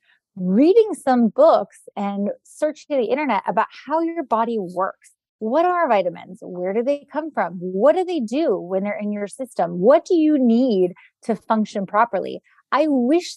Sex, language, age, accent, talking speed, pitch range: female, English, 20-39, American, 170 wpm, 190-255 Hz